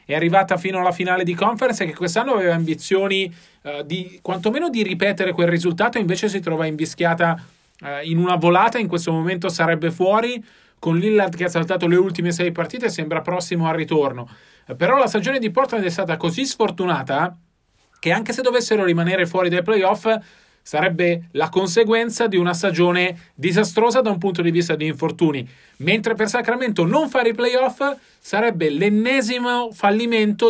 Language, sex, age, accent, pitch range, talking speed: Italian, male, 30-49, native, 165-210 Hz, 175 wpm